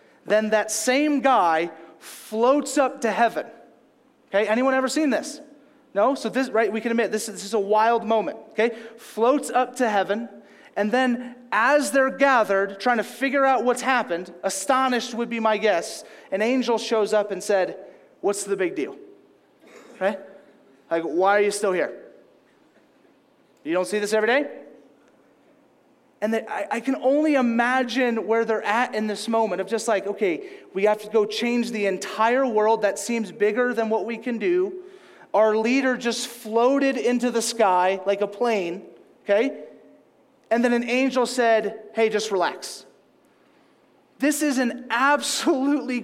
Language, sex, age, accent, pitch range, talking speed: English, male, 30-49, American, 215-265 Hz, 160 wpm